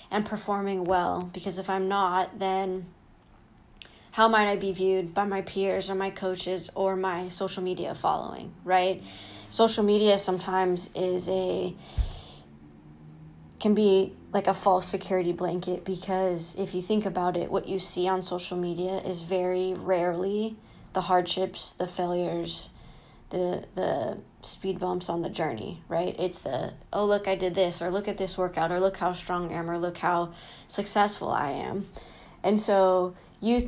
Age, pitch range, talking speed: 20-39, 175-195 Hz, 160 wpm